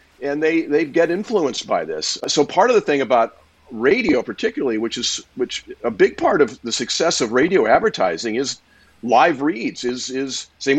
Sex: male